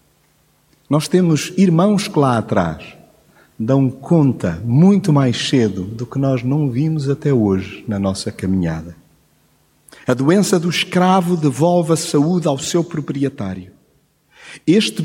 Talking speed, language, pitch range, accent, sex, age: 130 wpm, Portuguese, 105-160 Hz, Brazilian, male, 50-69